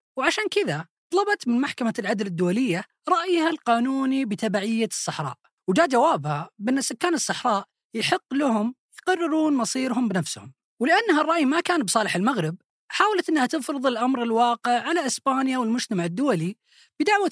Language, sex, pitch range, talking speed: Arabic, female, 215-320 Hz, 130 wpm